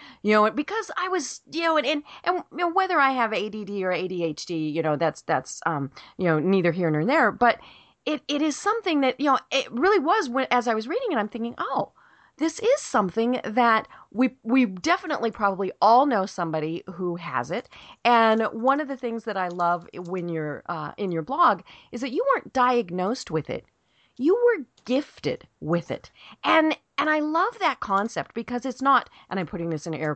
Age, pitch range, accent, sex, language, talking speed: 40-59, 185-295 Hz, American, female, English, 210 wpm